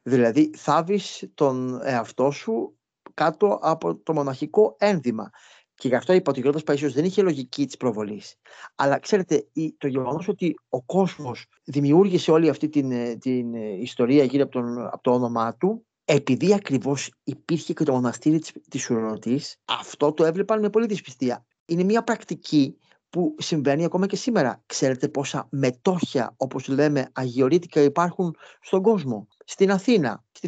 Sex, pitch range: male, 130-190 Hz